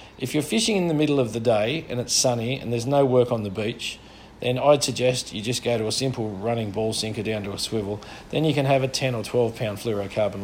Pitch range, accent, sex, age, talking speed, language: 105-130 Hz, Australian, male, 40-59, 255 wpm, English